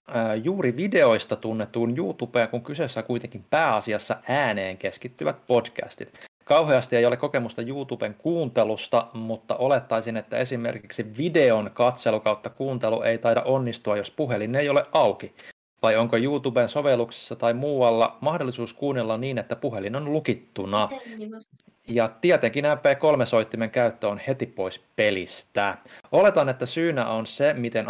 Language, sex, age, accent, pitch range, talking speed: Finnish, male, 30-49, native, 110-135 Hz, 130 wpm